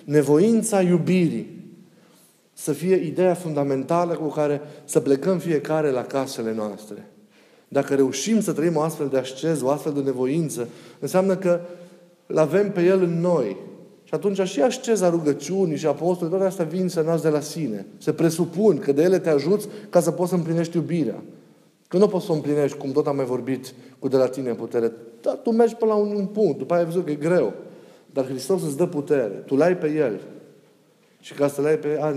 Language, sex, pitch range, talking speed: Romanian, male, 135-175 Hz, 205 wpm